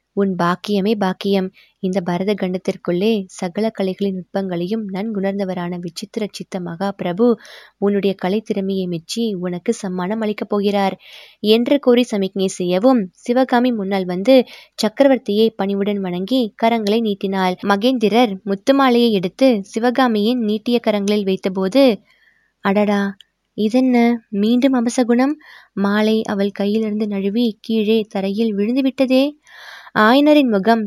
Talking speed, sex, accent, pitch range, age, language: 105 wpm, female, native, 195-240 Hz, 20-39, Tamil